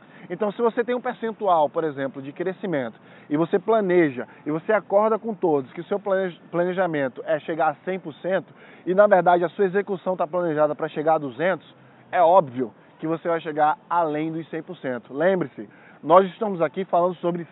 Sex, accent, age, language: male, Brazilian, 10-29, Portuguese